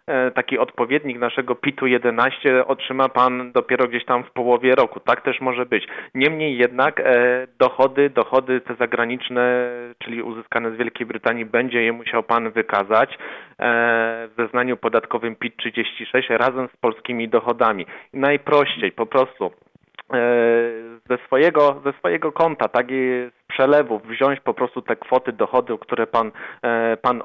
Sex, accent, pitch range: male, native, 115-130 Hz